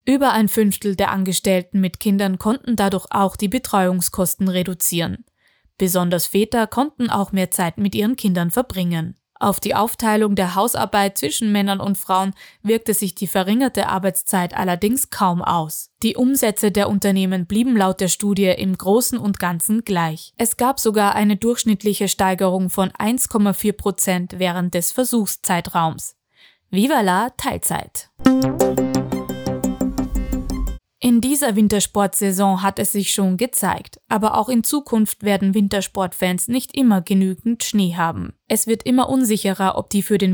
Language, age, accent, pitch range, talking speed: German, 20-39, German, 185-215 Hz, 140 wpm